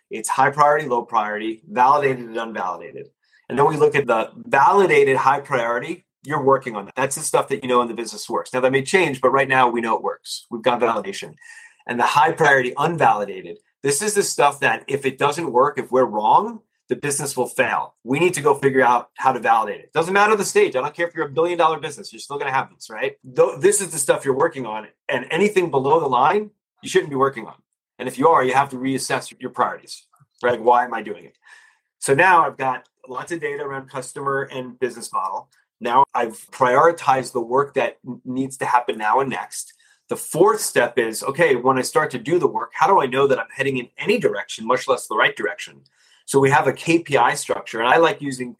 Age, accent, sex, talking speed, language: 30-49, American, male, 235 wpm, English